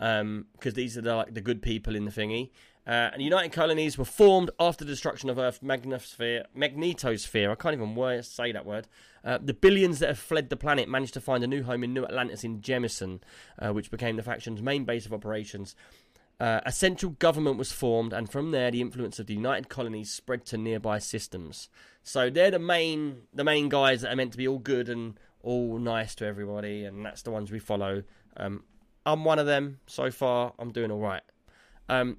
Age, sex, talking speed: 20-39, male, 215 wpm